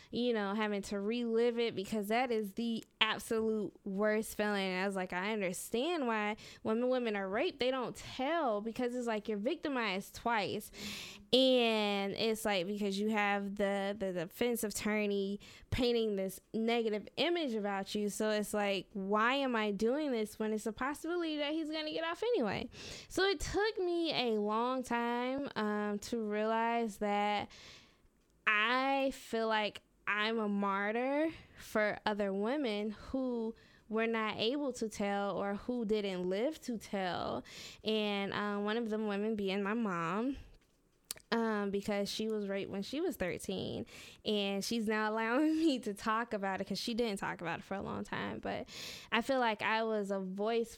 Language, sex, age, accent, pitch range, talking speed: English, female, 10-29, American, 205-235 Hz, 175 wpm